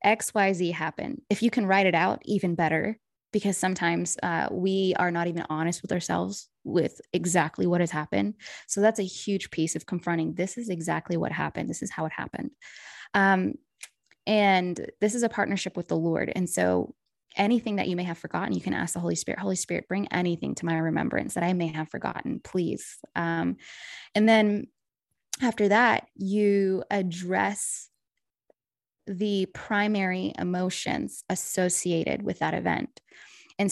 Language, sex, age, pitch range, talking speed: English, female, 20-39, 170-200 Hz, 165 wpm